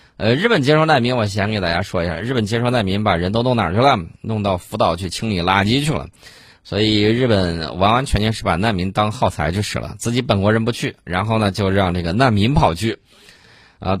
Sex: male